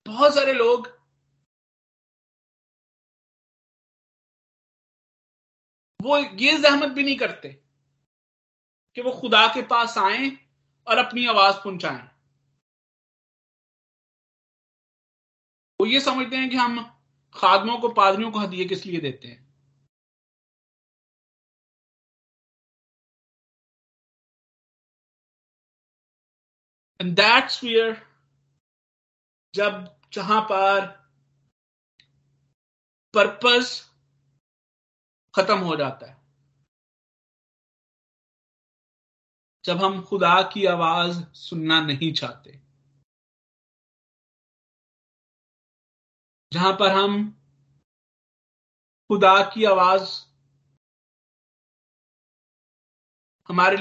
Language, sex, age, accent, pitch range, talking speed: Hindi, male, 50-69, native, 140-210 Hz, 60 wpm